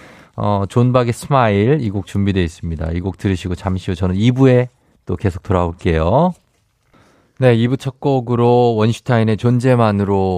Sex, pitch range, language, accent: male, 95-125 Hz, Korean, native